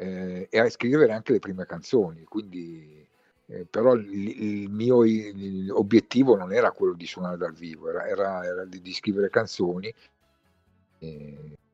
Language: Italian